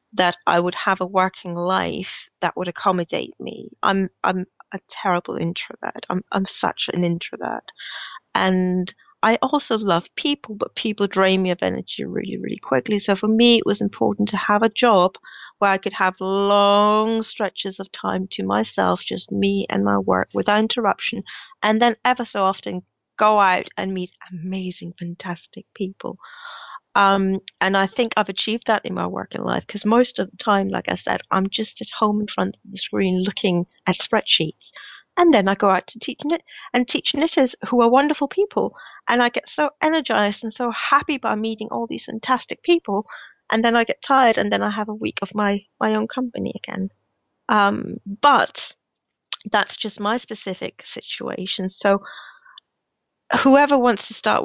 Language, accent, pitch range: English, British, 185-230 Hz